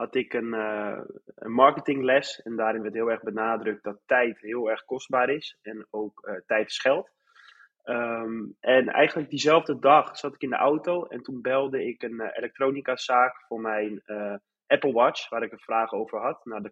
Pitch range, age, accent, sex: 115-140 Hz, 20-39, Dutch, male